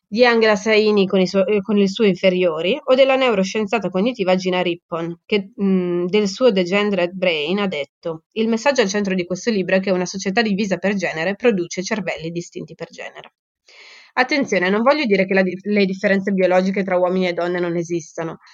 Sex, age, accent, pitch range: female, 20-39, native, 175-210 Hz